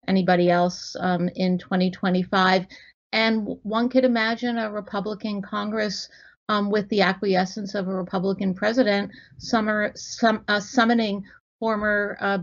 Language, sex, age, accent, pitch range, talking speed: English, female, 50-69, American, 180-210 Hz, 110 wpm